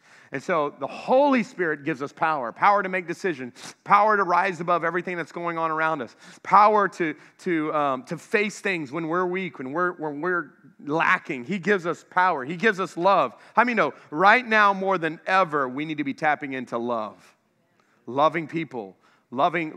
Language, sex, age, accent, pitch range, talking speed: English, male, 30-49, American, 150-200 Hz, 190 wpm